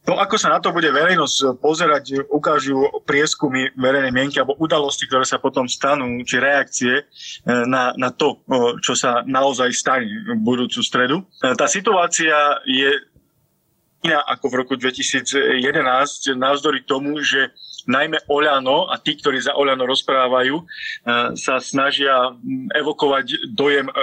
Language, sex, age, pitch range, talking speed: Slovak, male, 20-39, 130-155 Hz, 130 wpm